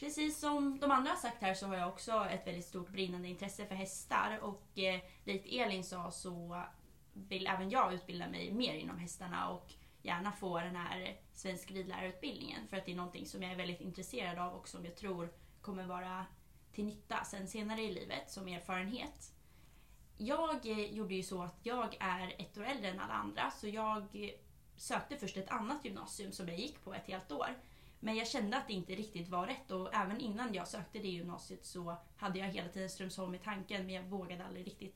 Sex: female